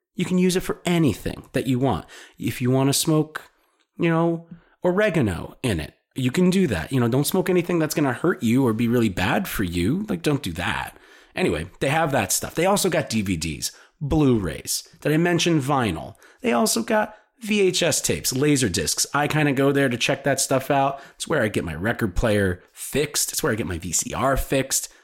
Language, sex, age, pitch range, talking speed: English, male, 30-49, 110-155 Hz, 215 wpm